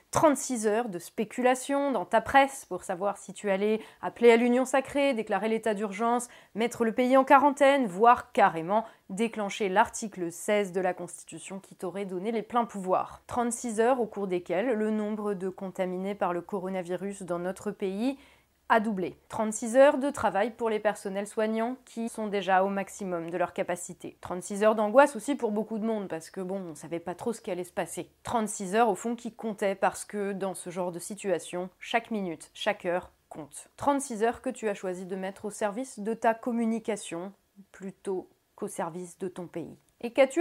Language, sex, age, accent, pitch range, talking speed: French, female, 20-39, French, 190-235 Hz, 195 wpm